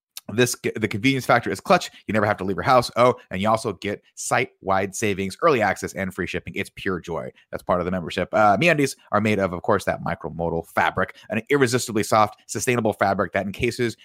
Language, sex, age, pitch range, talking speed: English, male, 30-49, 100-135 Hz, 215 wpm